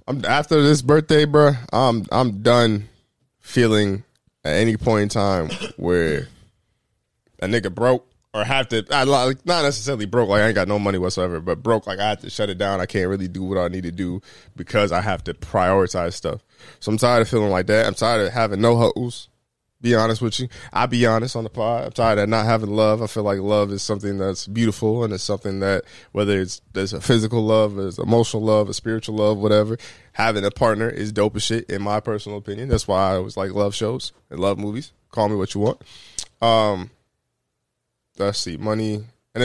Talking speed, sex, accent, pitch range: 215 wpm, male, American, 100-120 Hz